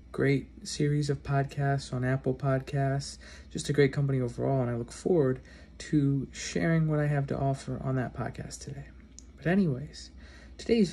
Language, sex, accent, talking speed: English, male, American, 165 wpm